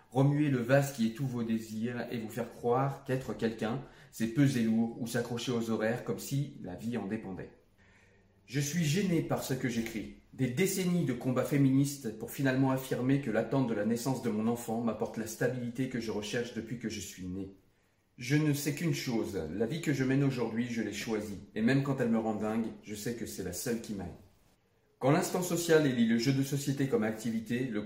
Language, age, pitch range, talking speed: French, 40-59, 110-135 Hz, 220 wpm